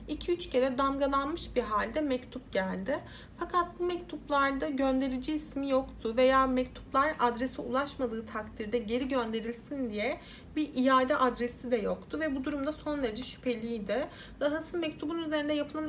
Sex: female